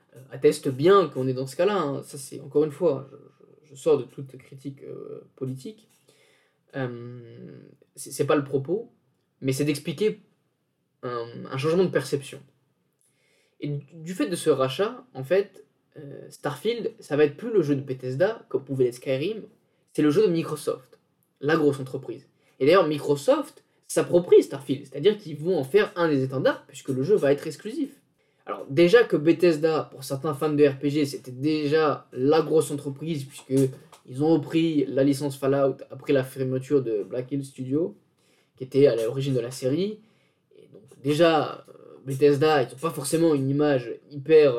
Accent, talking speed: French, 175 wpm